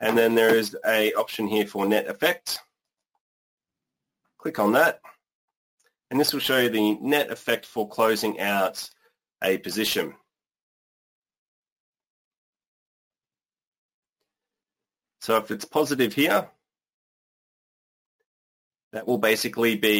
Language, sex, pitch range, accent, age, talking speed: English, male, 100-115 Hz, Australian, 30-49, 105 wpm